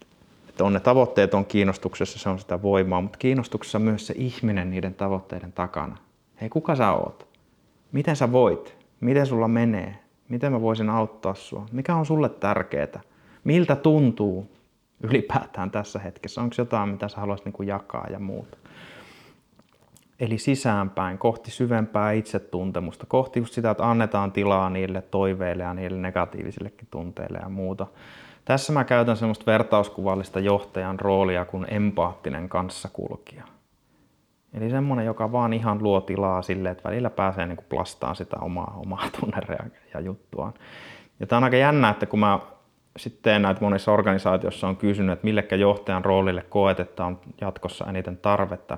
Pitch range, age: 95-115 Hz, 30-49